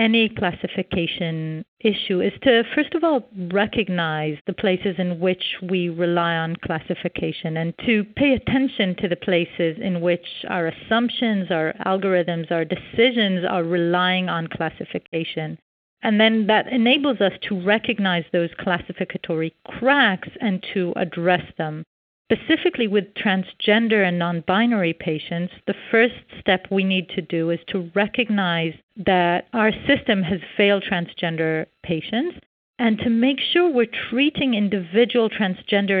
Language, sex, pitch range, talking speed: English, female, 175-225 Hz, 135 wpm